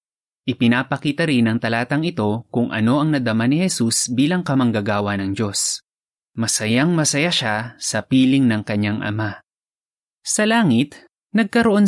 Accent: native